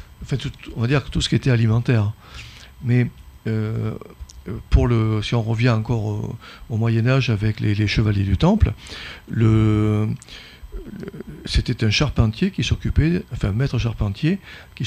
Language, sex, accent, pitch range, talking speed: French, male, French, 110-130 Hz, 165 wpm